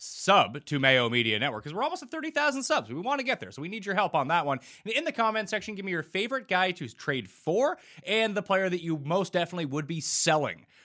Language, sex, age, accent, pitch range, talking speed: English, male, 30-49, American, 115-175 Hz, 260 wpm